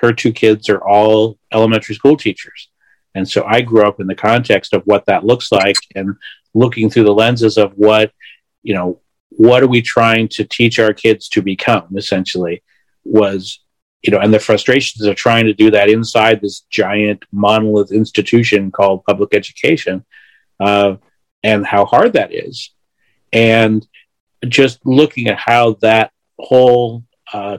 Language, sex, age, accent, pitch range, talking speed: English, male, 50-69, American, 105-115 Hz, 160 wpm